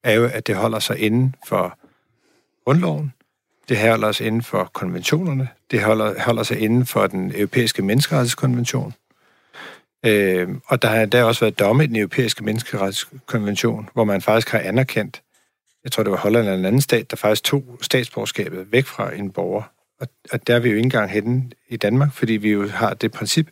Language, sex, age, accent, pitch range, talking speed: Danish, male, 50-69, native, 110-135 Hz, 190 wpm